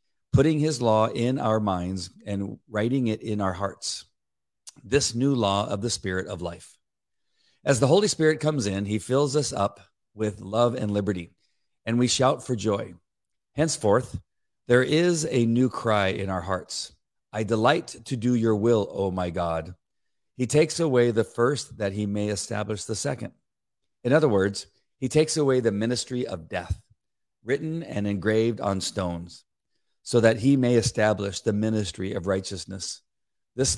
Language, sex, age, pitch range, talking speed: English, male, 40-59, 100-125 Hz, 165 wpm